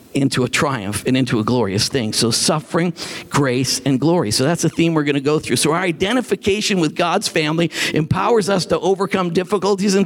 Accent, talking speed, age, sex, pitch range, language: American, 205 wpm, 50-69, male, 180-255 Hz, English